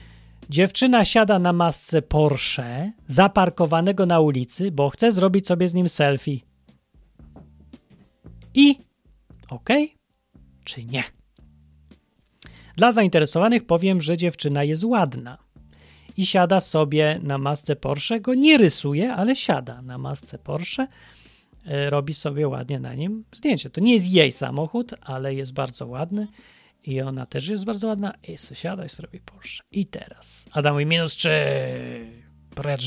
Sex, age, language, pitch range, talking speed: male, 30-49, Polish, 130-180 Hz, 130 wpm